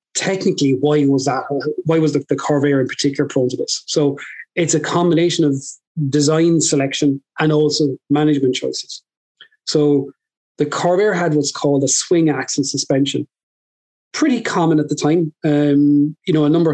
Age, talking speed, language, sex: 30-49, 160 wpm, English, male